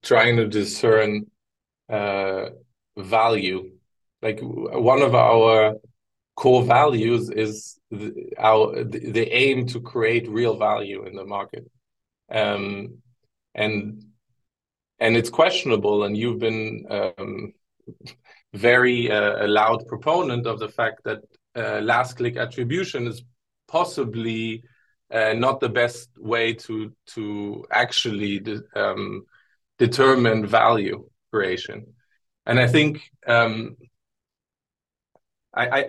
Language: English